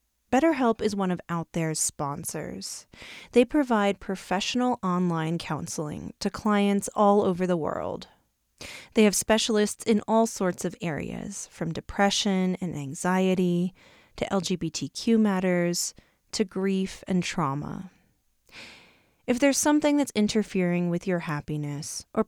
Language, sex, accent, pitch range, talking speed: English, female, American, 160-215 Hz, 125 wpm